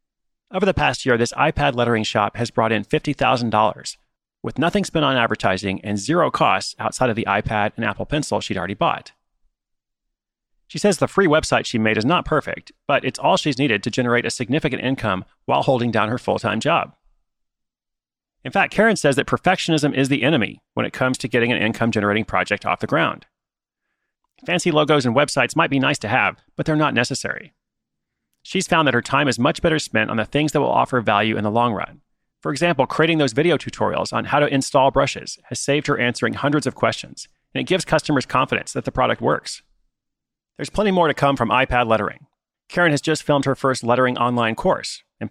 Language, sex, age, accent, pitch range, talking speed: English, male, 30-49, American, 115-150 Hz, 205 wpm